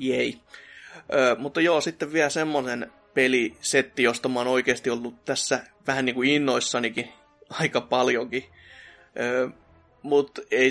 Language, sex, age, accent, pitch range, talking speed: Finnish, male, 20-39, native, 125-150 Hz, 125 wpm